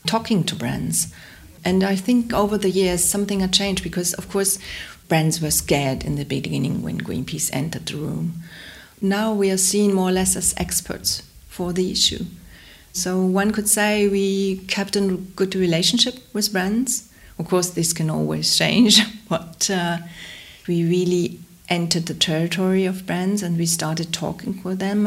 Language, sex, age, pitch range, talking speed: English, female, 40-59, 160-195 Hz, 170 wpm